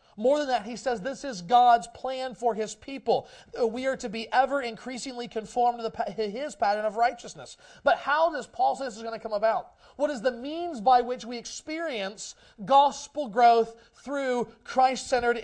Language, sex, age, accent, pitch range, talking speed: English, male, 30-49, American, 200-250 Hz, 185 wpm